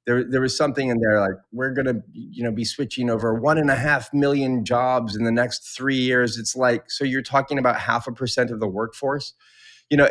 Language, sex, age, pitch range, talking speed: English, male, 30-49, 110-140 Hz, 235 wpm